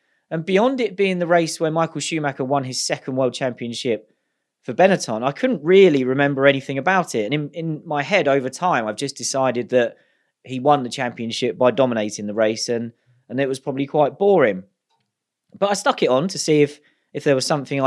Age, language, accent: 30-49, English, British